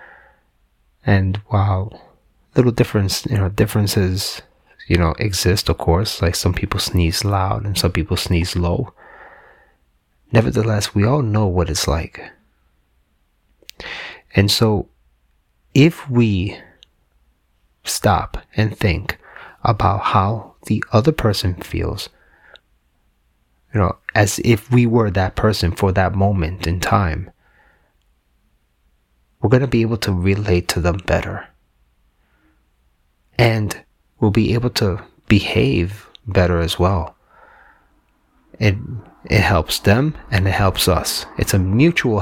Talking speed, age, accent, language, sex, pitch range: 120 wpm, 30-49, American, English, male, 80-105 Hz